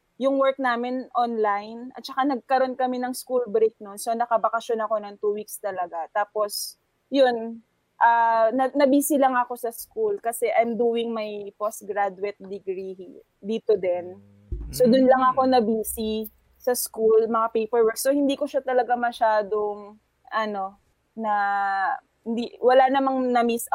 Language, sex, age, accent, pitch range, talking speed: Filipino, female, 20-39, native, 205-255 Hz, 145 wpm